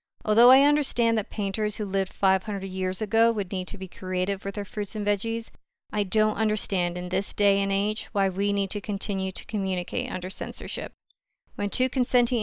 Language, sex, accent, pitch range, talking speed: English, female, American, 195-230 Hz, 195 wpm